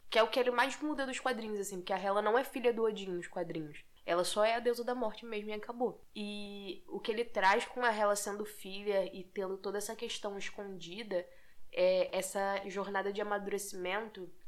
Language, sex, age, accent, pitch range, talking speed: Portuguese, female, 10-29, Brazilian, 180-225 Hz, 210 wpm